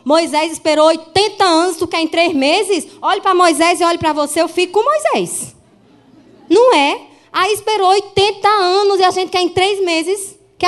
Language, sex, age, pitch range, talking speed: Portuguese, female, 20-39, 275-380 Hz, 190 wpm